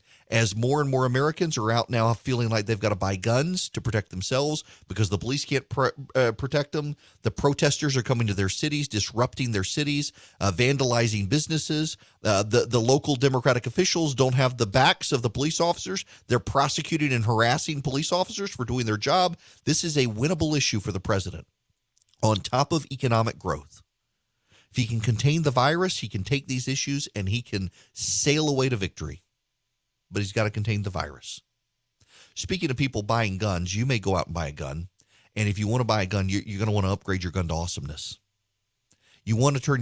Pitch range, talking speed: 100-135 Hz, 195 wpm